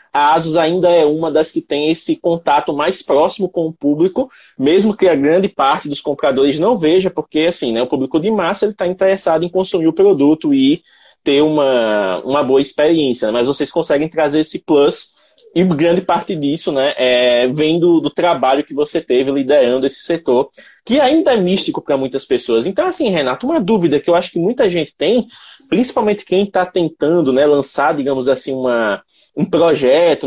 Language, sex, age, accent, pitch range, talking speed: Portuguese, male, 20-39, Brazilian, 145-210 Hz, 190 wpm